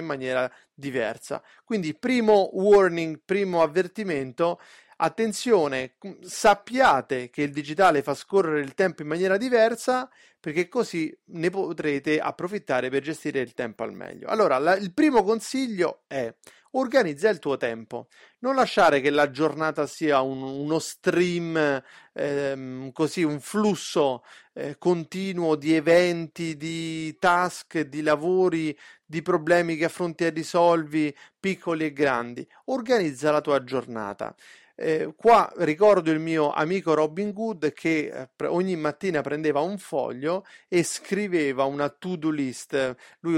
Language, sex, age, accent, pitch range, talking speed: Italian, male, 30-49, native, 140-185 Hz, 130 wpm